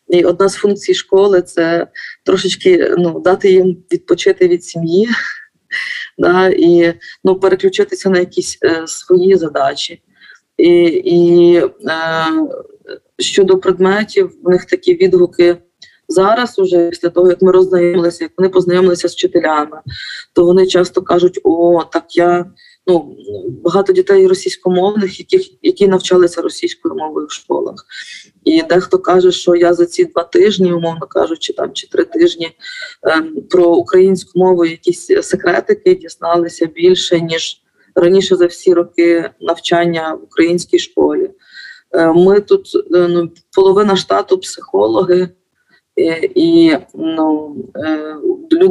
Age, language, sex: 20-39, Ukrainian, female